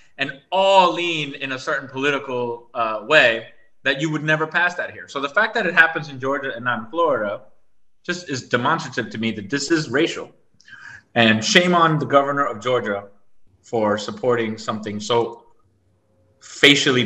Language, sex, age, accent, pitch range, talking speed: English, male, 30-49, American, 110-155 Hz, 170 wpm